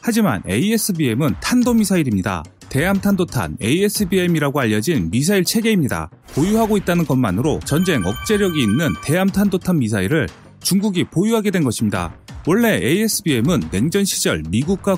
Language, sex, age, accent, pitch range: Korean, male, 30-49, native, 145-210 Hz